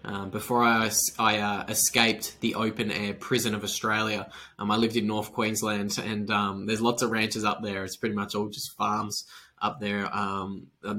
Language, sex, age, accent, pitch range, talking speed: English, male, 10-29, Australian, 105-120 Hz, 190 wpm